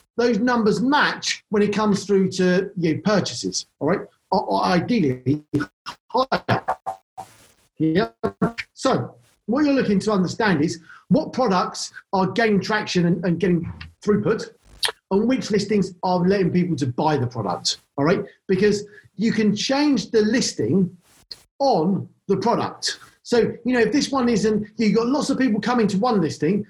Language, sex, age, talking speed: English, male, 40-59, 160 wpm